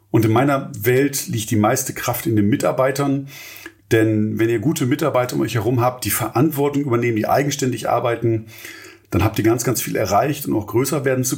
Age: 40-59